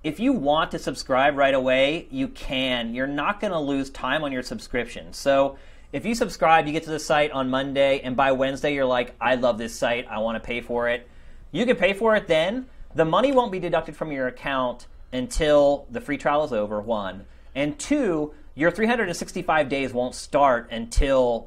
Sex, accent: male, American